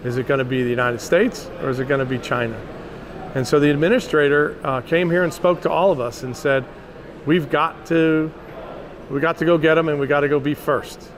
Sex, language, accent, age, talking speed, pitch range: male, English, American, 40-59, 220 wpm, 135-165 Hz